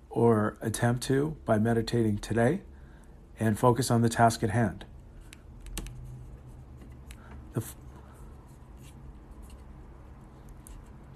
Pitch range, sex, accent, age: 105-140 Hz, male, American, 40-59